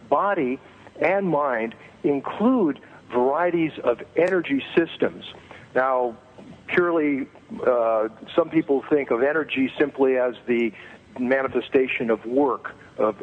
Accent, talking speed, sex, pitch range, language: American, 105 wpm, male, 120-145 Hz, English